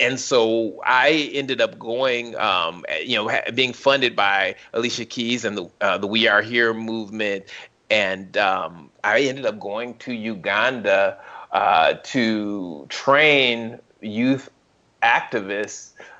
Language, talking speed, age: English, 120 wpm, 30-49